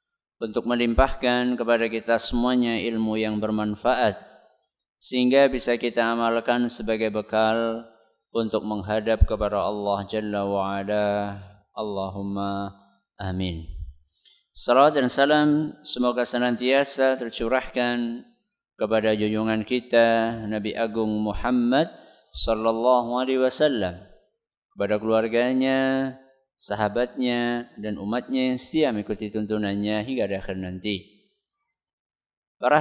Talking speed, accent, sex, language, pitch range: 90 wpm, native, male, Indonesian, 105-125 Hz